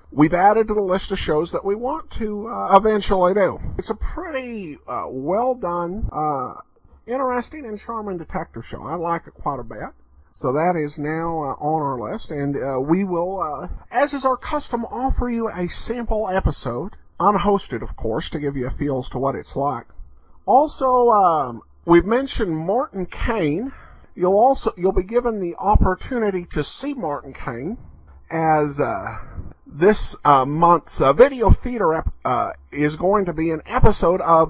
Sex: male